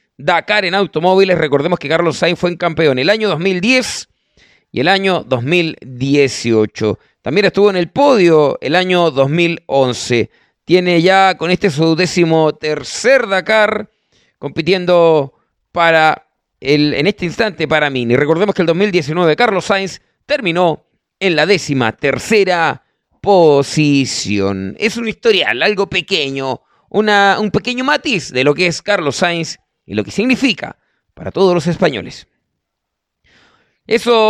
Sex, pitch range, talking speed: male, 160-210 Hz, 135 wpm